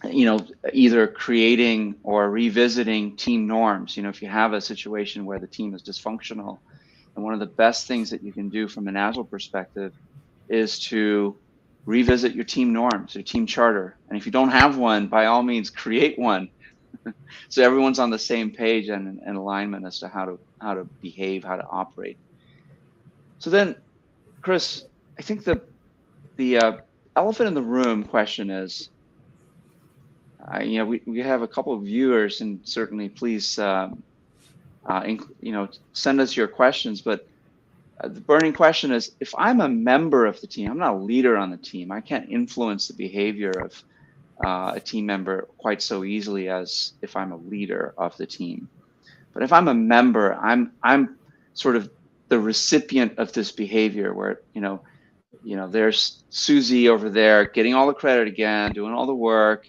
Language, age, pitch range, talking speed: English, 30-49, 105-125 Hz, 180 wpm